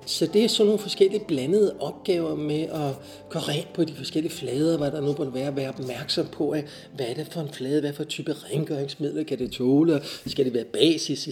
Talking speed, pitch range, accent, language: 225 wpm, 145-195 Hz, native, Danish